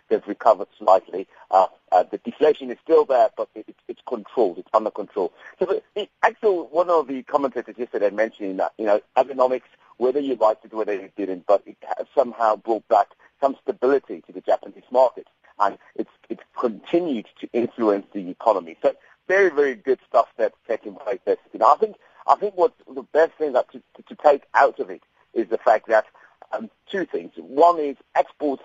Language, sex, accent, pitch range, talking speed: English, male, British, 110-170 Hz, 205 wpm